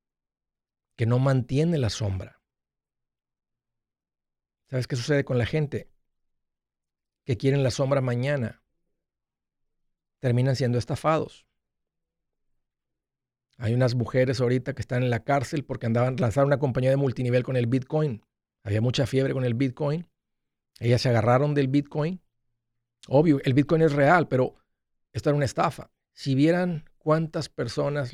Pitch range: 115-140 Hz